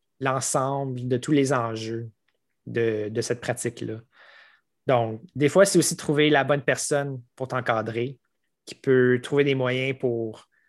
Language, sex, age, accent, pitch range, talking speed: French, male, 20-39, Canadian, 125-150 Hz, 145 wpm